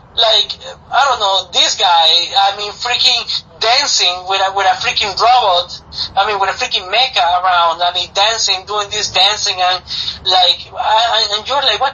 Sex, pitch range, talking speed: male, 215-255 Hz, 180 wpm